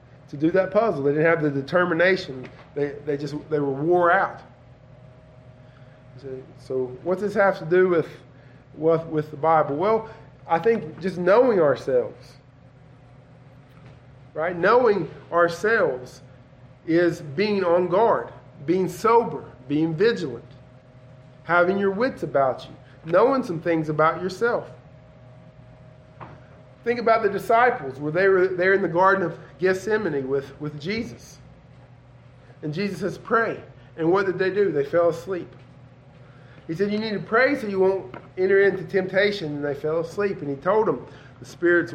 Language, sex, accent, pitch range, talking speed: English, male, American, 135-185 Hz, 145 wpm